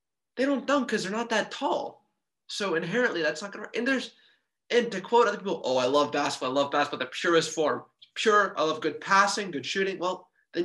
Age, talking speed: 20-39, 220 wpm